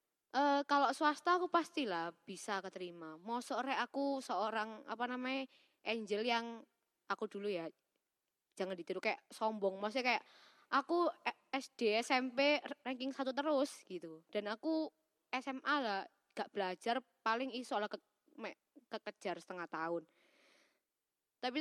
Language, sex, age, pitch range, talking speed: Indonesian, female, 20-39, 205-280 Hz, 120 wpm